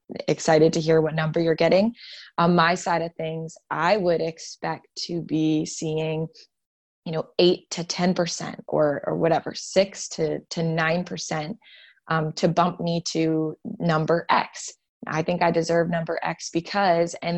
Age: 20-39